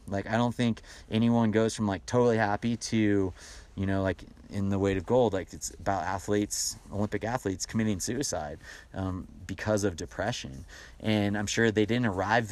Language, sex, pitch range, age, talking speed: English, male, 95-110 Hz, 30-49, 175 wpm